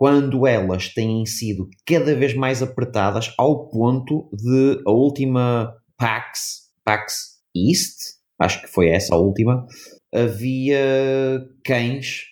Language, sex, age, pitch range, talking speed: Portuguese, male, 30-49, 100-130 Hz, 115 wpm